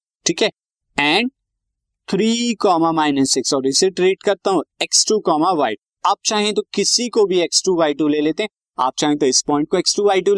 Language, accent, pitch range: Hindi, native, 130-210 Hz